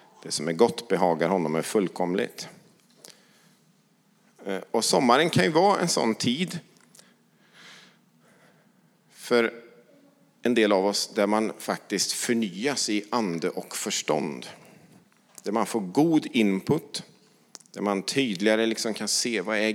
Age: 50-69